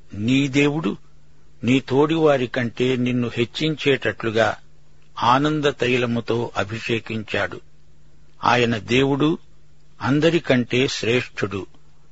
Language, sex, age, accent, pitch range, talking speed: Telugu, male, 60-79, native, 110-140 Hz, 65 wpm